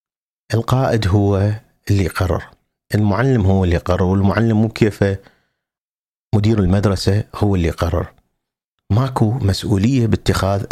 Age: 40-59